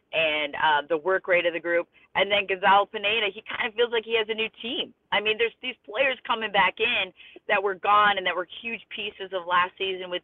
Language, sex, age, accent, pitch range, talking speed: English, female, 30-49, American, 160-200 Hz, 245 wpm